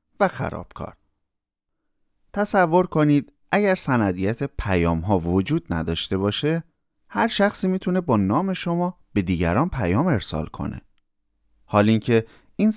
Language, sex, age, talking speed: Persian, male, 30-49, 115 wpm